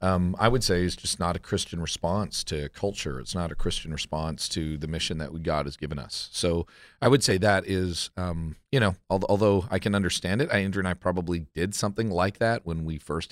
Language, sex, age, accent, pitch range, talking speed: English, male, 40-59, American, 80-95 Hz, 225 wpm